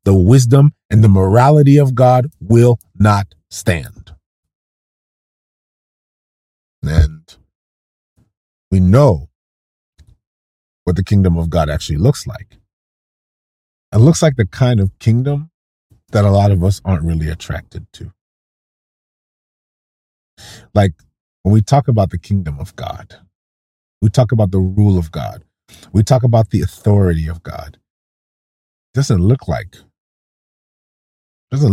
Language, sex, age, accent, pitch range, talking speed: English, male, 40-59, American, 85-115 Hz, 125 wpm